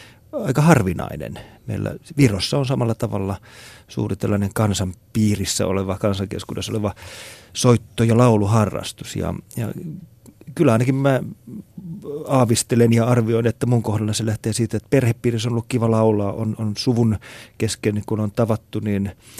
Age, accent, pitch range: 30-49, native, 105-120 Hz